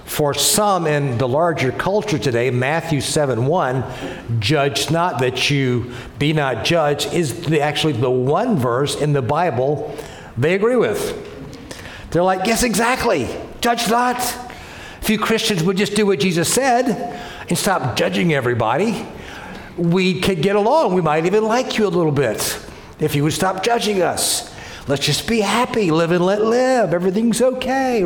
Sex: male